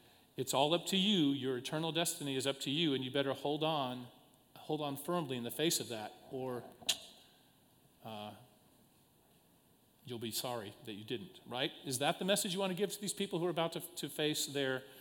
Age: 40-59